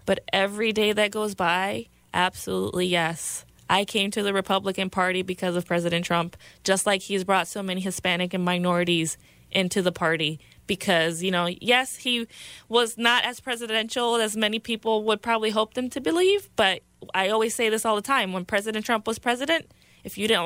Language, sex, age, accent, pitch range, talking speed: English, female, 20-39, American, 185-220 Hz, 190 wpm